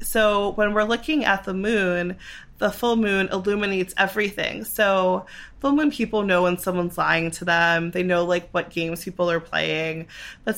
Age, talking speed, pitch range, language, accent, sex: 20-39, 175 wpm, 170-195 Hz, English, American, female